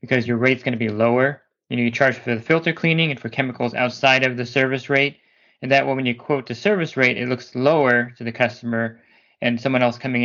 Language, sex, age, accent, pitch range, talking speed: English, male, 20-39, American, 115-130 Hz, 245 wpm